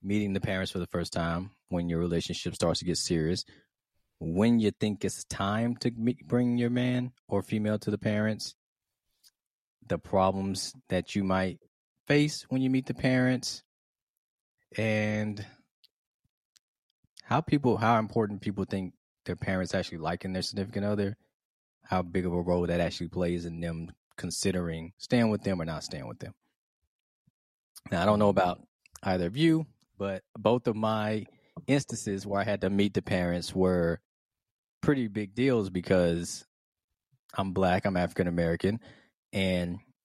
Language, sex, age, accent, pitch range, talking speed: English, male, 20-39, American, 90-110 Hz, 155 wpm